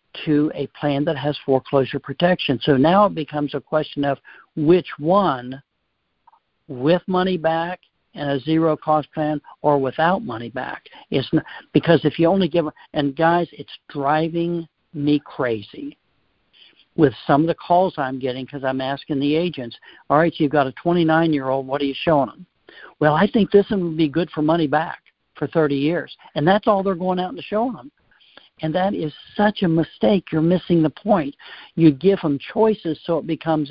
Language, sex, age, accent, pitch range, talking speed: English, male, 60-79, American, 140-170 Hz, 185 wpm